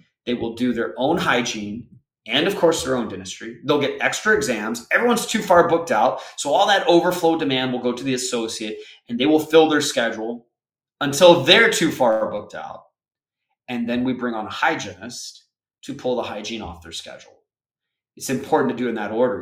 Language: English